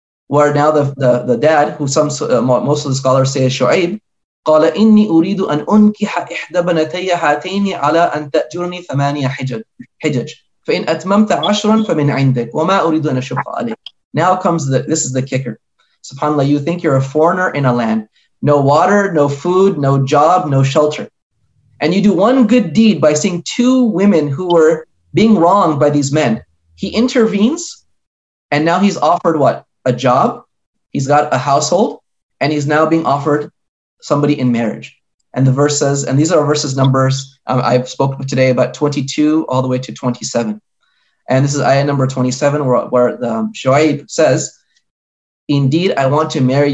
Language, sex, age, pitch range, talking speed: English, male, 20-39, 130-170 Hz, 150 wpm